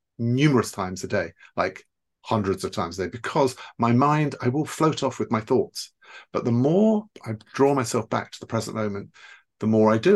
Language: English